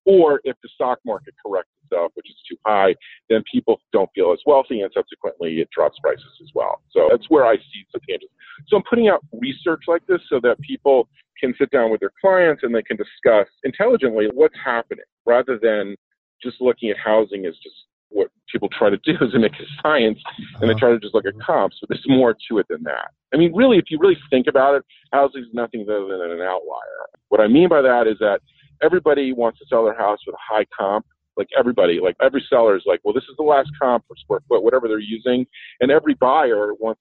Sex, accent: male, American